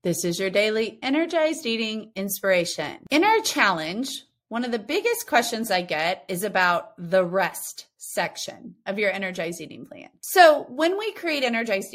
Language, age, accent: English, 30-49, American